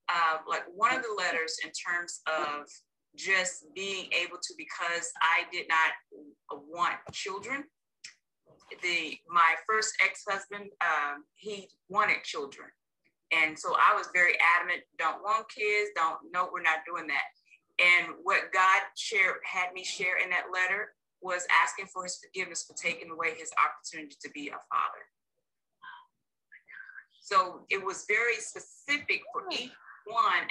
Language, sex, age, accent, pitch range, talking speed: English, female, 20-39, American, 170-245 Hz, 145 wpm